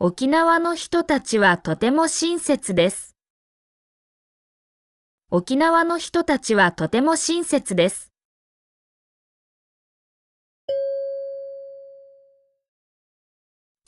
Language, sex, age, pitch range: Japanese, female, 20-39, 235-295 Hz